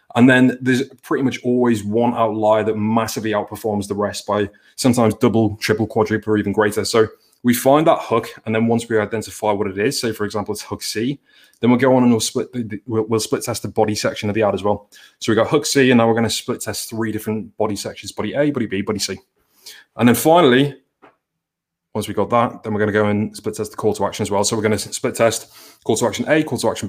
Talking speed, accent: 250 wpm, British